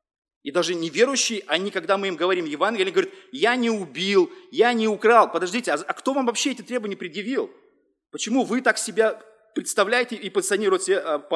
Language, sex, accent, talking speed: Russian, male, native, 170 wpm